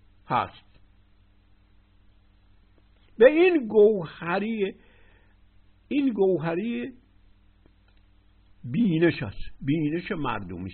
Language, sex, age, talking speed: Persian, male, 60-79, 55 wpm